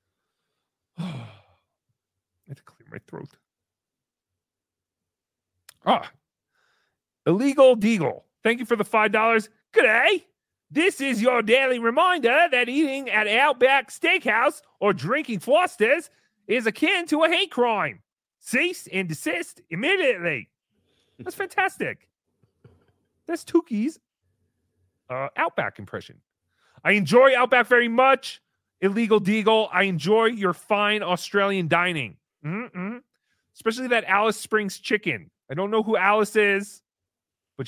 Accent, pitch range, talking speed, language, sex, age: American, 180-270 Hz, 120 wpm, English, male, 30-49